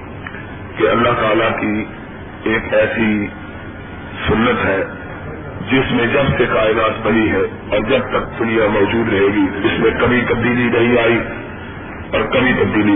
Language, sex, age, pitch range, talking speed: Urdu, male, 50-69, 100-140 Hz, 145 wpm